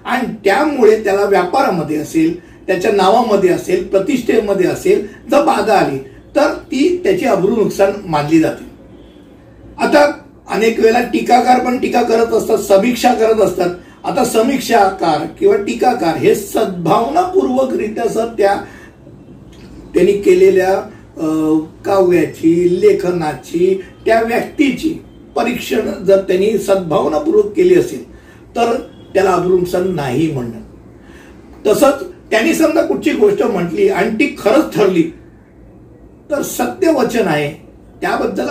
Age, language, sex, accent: 50-69, Hindi, male, native